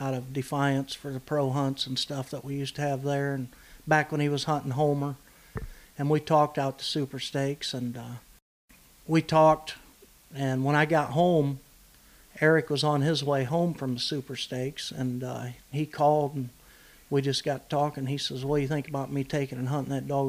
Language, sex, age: English, male, 50-69